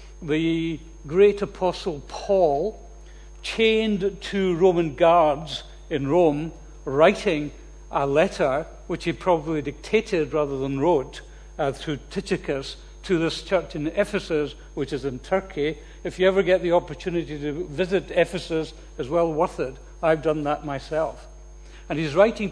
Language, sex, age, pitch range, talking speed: English, male, 60-79, 155-190 Hz, 140 wpm